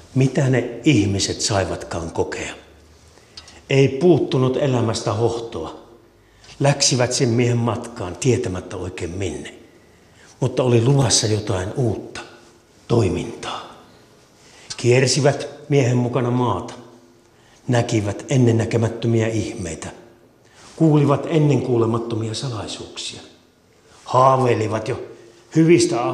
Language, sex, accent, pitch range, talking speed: Finnish, male, native, 100-130 Hz, 85 wpm